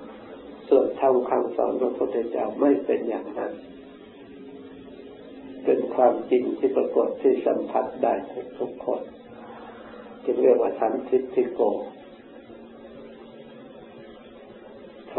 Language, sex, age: Thai, male, 60-79